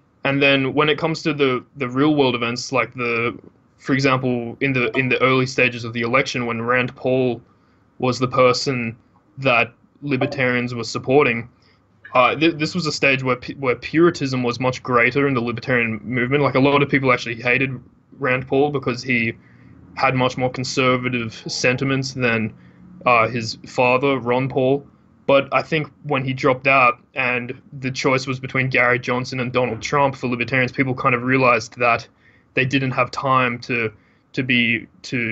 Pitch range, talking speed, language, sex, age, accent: 120-135 Hz, 180 wpm, English, male, 20-39, Australian